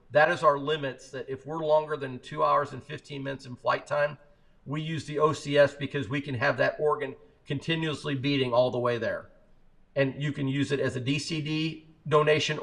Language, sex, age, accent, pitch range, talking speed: English, male, 50-69, American, 130-150 Hz, 200 wpm